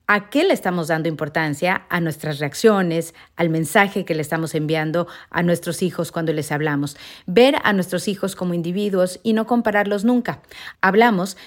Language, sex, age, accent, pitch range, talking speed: Spanish, female, 40-59, Mexican, 170-215 Hz, 170 wpm